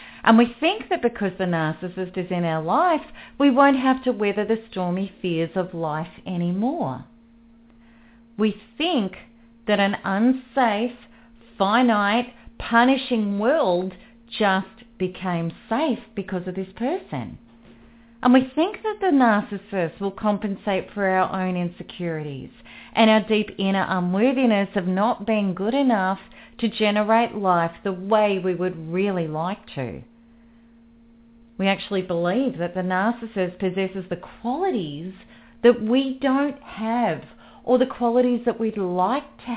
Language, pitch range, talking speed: English, 185-235 Hz, 135 wpm